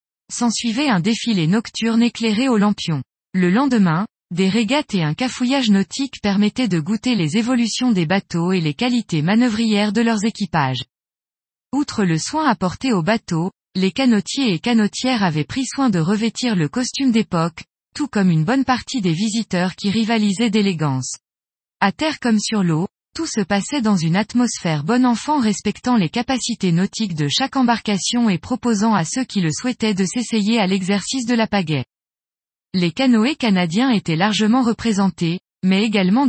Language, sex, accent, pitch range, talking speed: French, female, French, 185-240 Hz, 165 wpm